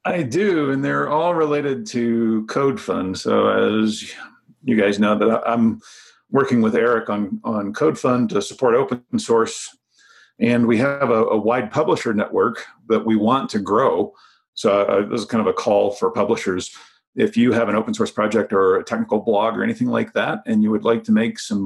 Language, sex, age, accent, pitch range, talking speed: English, male, 50-69, American, 105-150 Hz, 195 wpm